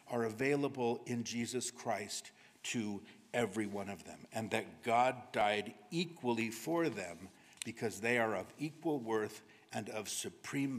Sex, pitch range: male, 115-155 Hz